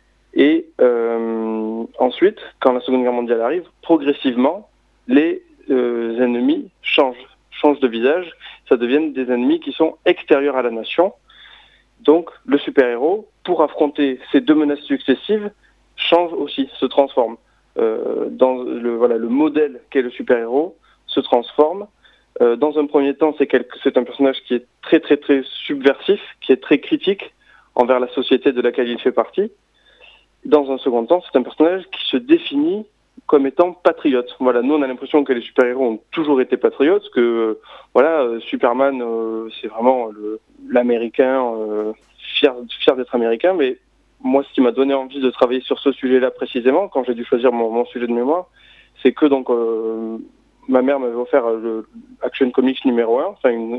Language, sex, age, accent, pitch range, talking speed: French, male, 30-49, French, 120-165 Hz, 170 wpm